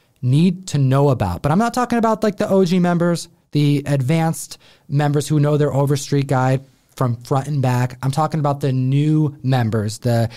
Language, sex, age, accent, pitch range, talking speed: English, male, 30-49, American, 120-150 Hz, 185 wpm